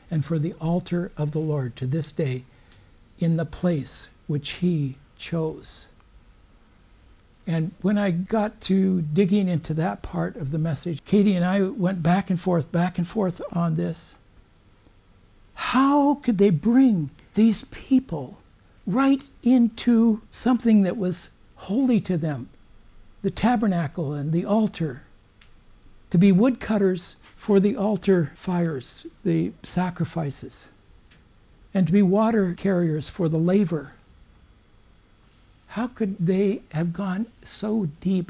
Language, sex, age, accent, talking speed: English, male, 60-79, American, 130 wpm